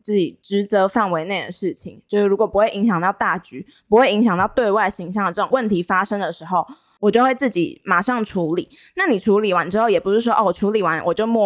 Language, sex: Chinese, female